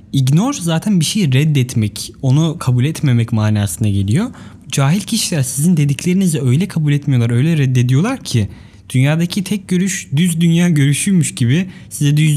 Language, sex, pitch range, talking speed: Turkish, male, 120-170 Hz, 140 wpm